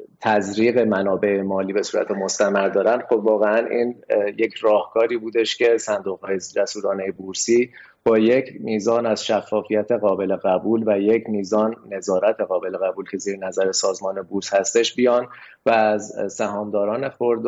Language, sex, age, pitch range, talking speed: Persian, male, 30-49, 100-115 Hz, 140 wpm